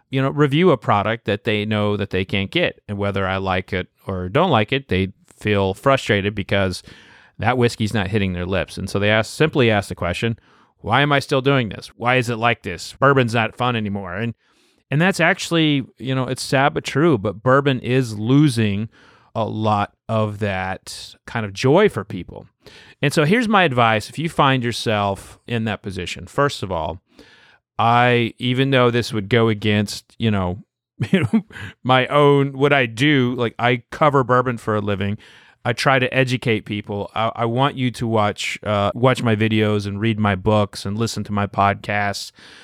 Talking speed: 195 wpm